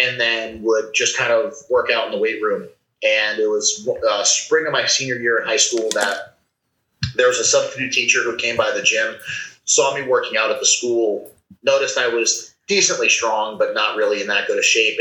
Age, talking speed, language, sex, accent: 30-49, 220 wpm, English, male, American